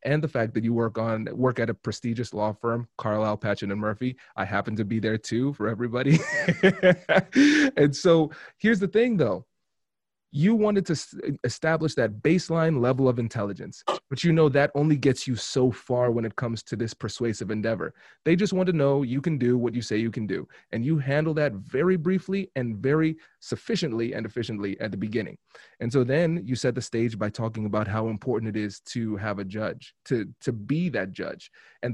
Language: English